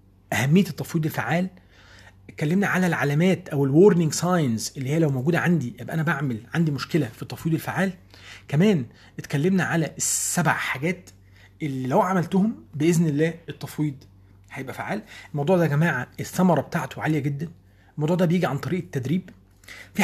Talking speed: 150 wpm